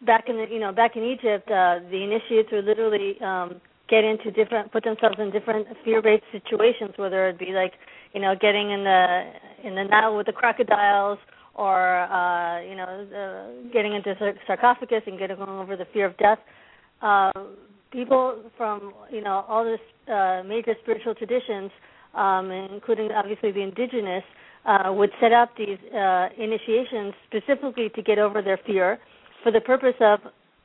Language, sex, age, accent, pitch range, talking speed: English, female, 40-59, American, 195-225 Hz, 170 wpm